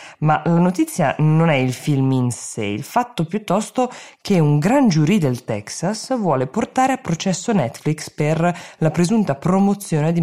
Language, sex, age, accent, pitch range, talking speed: Italian, female, 20-39, native, 130-165 Hz, 165 wpm